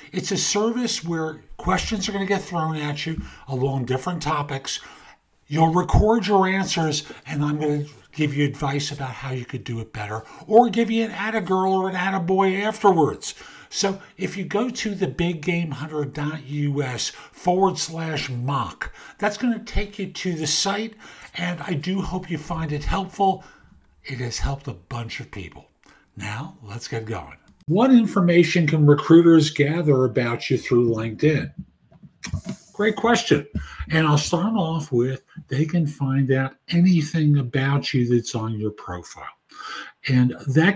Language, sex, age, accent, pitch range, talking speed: English, male, 50-69, American, 135-185 Hz, 165 wpm